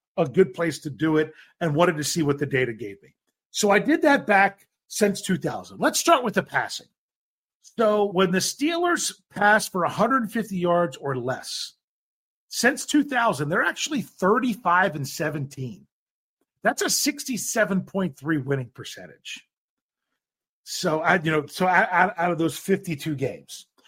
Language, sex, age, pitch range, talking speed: English, male, 50-69, 155-220 Hz, 150 wpm